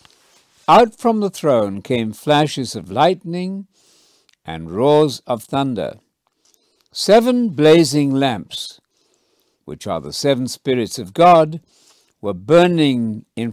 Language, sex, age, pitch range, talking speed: English, male, 60-79, 110-155 Hz, 110 wpm